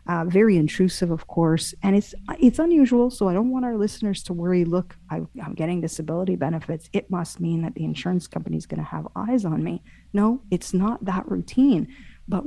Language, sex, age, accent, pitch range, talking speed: English, female, 40-59, American, 165-220 Hz, 205 wpm